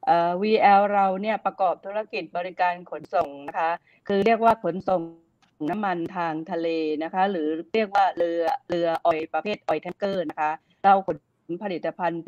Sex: female